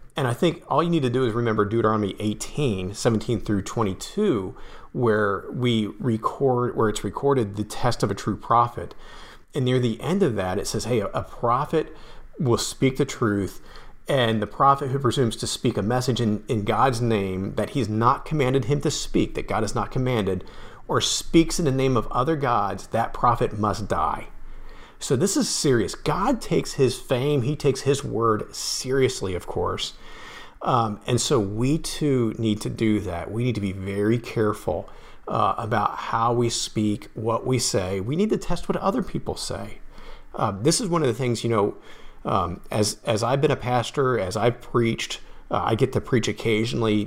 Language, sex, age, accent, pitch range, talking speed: English, male, 40-59, American, 105-135 Hz, 190 wpm